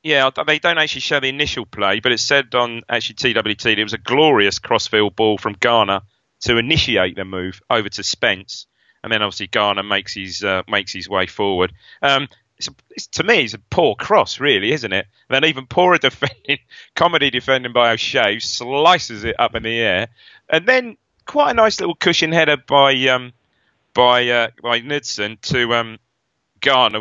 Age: 30-49